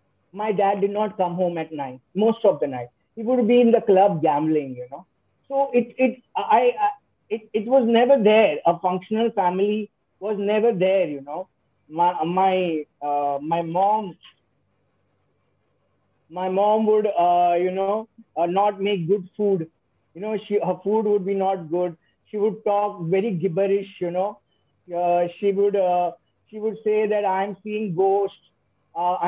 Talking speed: 170 wpm